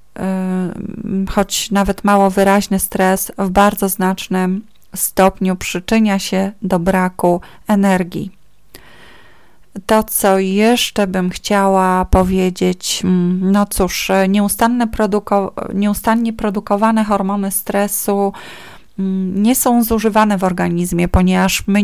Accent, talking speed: native, 90 wpm